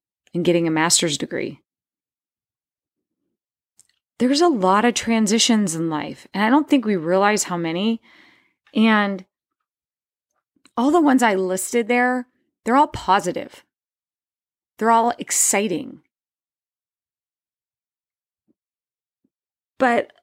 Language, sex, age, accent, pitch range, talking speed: English, female, 20-39, American, 190-255 Hz, 100 wpm